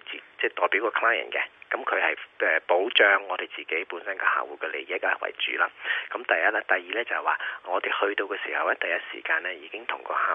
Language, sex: Chinese, male